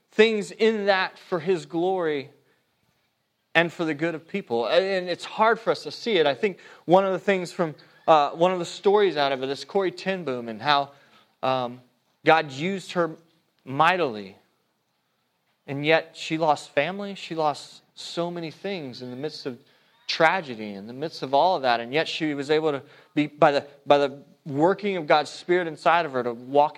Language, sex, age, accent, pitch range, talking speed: English, male, 30-49, American, 140-200 Hz, 195 wpm